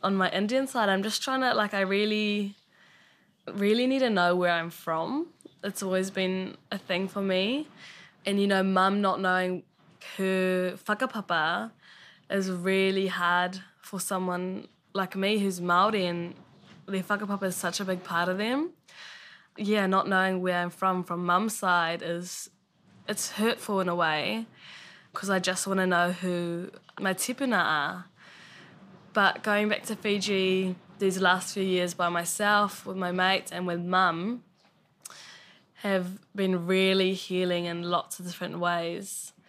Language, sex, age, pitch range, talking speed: English, female, 10-29, 180-200 Hz, 155 wpm